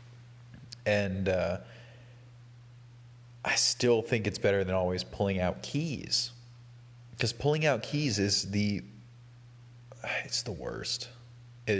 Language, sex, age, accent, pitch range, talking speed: English, male, 30-49, American, 100-120 Hz, 110 wpm